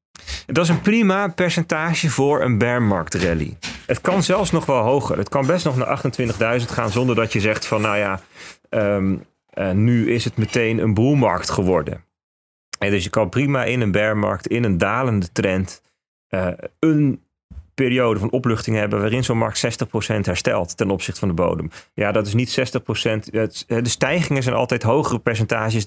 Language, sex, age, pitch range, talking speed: Dutch, male, 40-59, 105-140 Hz, 180 wpm